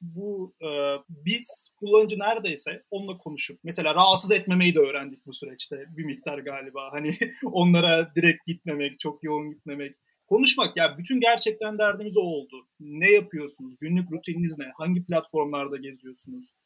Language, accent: Turkish, native